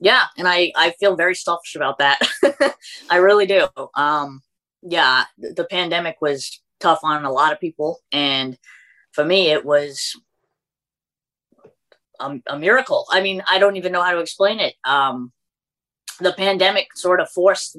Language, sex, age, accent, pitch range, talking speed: English, female, 20-39, American, 145-180 Hz, 160 wpm